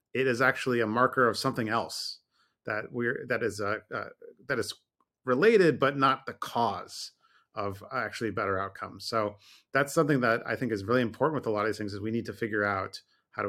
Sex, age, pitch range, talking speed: male, 30-49, 105-130 Hz, 215 wpm